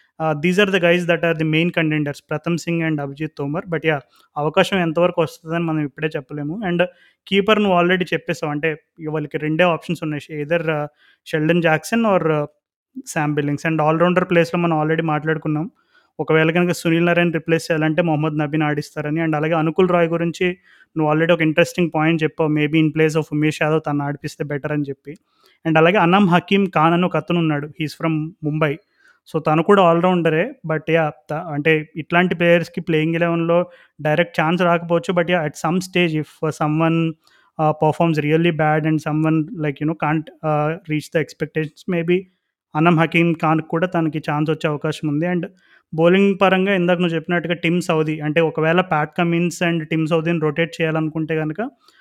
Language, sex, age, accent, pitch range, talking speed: Telugu, male, 20-39, native, 155-175 Hz, 175 wpm